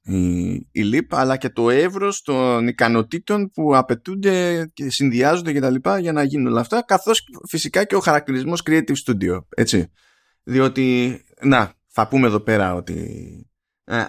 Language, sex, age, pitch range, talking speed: Greek, male, 20-39, 110-155 Hz, 145 wpm